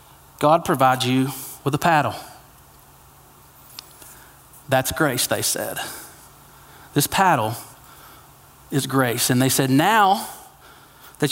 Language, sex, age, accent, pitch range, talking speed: English, male, 30-49, American, 135-180 Hz, 100 wpm